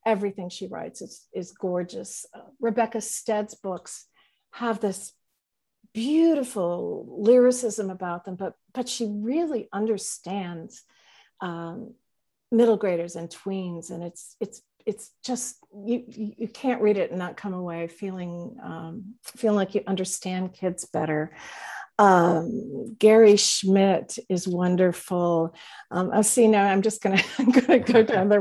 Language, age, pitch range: English, 50-69, 185-235 Hz